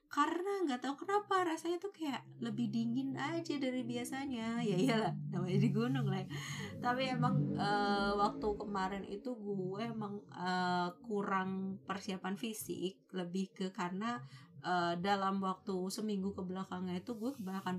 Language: Indonesian